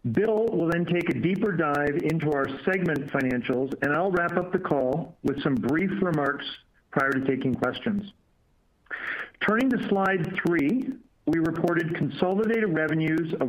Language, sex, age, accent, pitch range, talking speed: English, male, 50-69, American, 140-190 Hz, 150 wpm